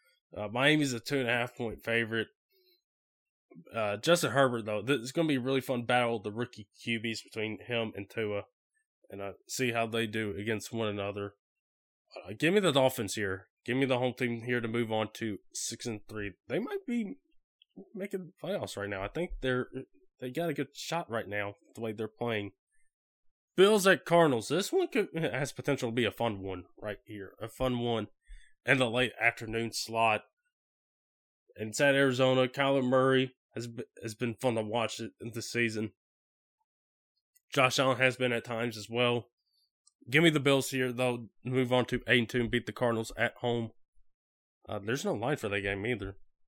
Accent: American